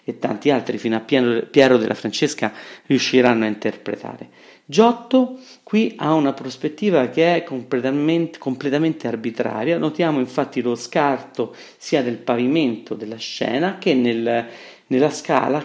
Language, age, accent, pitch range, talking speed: Italian, 40-59, native, 120-170 Hz, 130 wpm